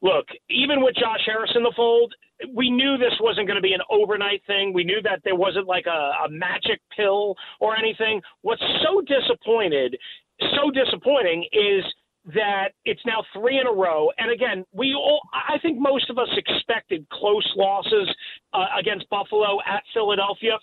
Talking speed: 175 wpm